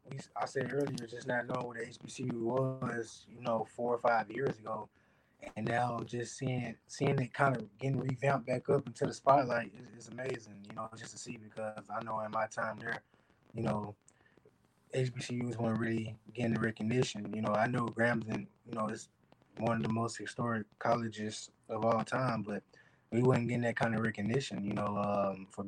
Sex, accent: male, American